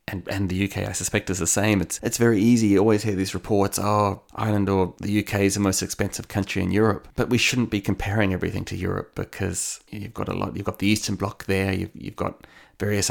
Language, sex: English, male